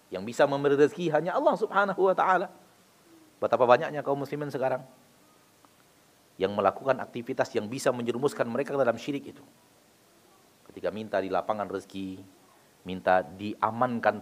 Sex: male